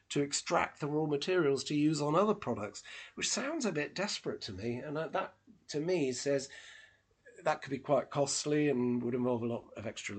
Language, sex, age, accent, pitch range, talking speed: English, male, 40-59, British, 120-155 Hz, 200 wpm